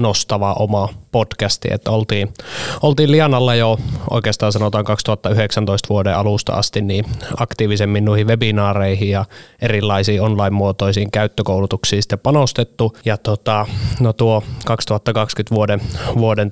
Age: 20-39